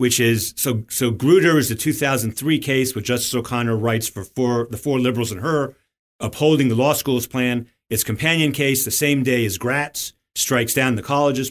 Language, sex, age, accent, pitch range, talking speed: English, male, 40-59, American, 115-160 Hz, 195 wpm